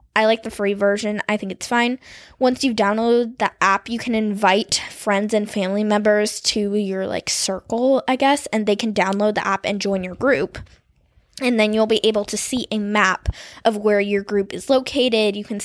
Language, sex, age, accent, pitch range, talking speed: English, female, 10-29, American, 200-230 Hz, 210 wpm